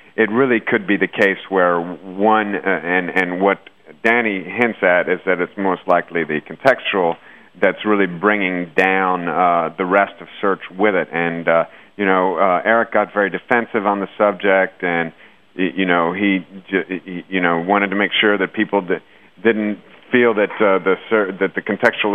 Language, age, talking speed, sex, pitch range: English, 40-59, 190 wpm, male, 90-105 Hz